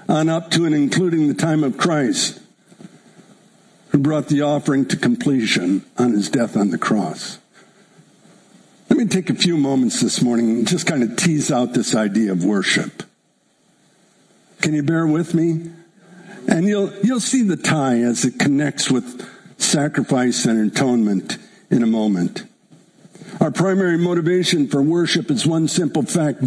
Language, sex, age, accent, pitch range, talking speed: English, male, 60-79, American, 155-210 Hz, 155 wpm